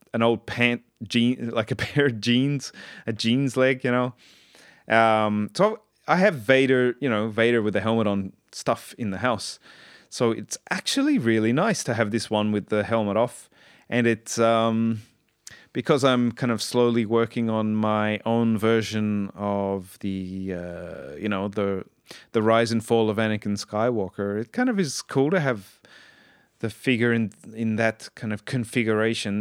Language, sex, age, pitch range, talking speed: English, male, 30-49, 105-130 Hz, 170 wpm